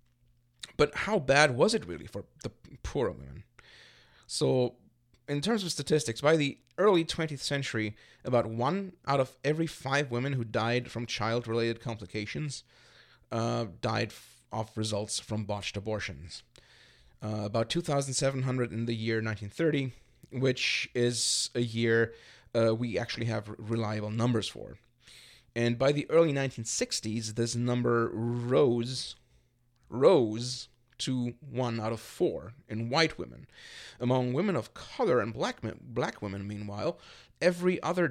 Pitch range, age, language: 115-140 Hz, 30-49, English